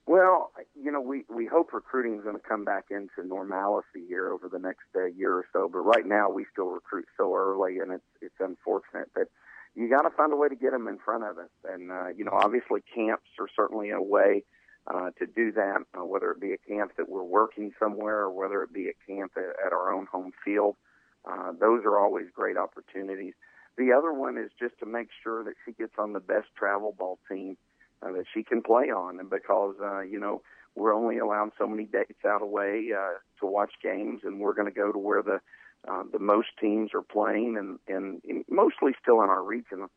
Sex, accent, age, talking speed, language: male, American, 50-69, 225 wpm, English